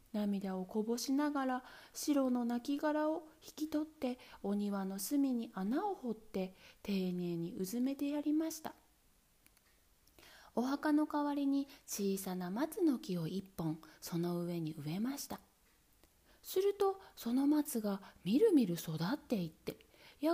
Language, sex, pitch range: Japanese, female, 190-295 Hz